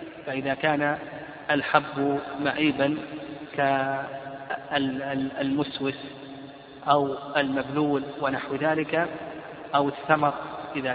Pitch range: 140-170 Hz